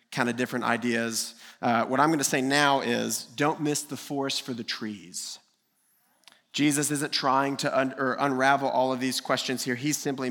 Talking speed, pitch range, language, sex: 190 wpm, 120-145 Hz, English, male